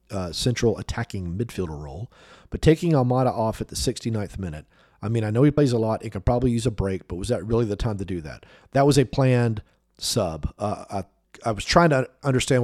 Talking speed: 230 wpm